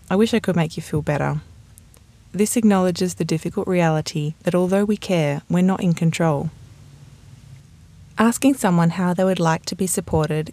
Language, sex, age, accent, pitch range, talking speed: English, female, 20-39, Australian, 150-195 Hz, 170 wpm